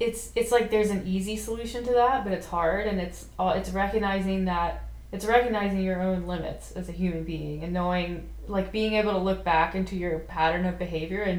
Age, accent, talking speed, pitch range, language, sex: 20-39, American, 215 wpm, 175-205 Hz, English, female